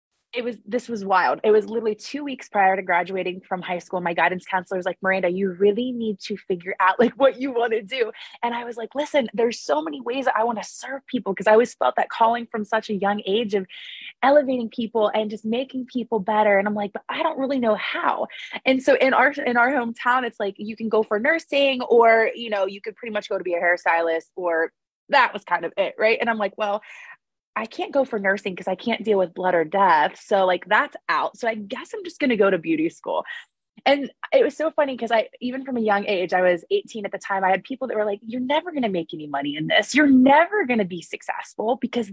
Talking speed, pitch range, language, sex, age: 260 wpm, 195-250 Hz, English, female, 20-39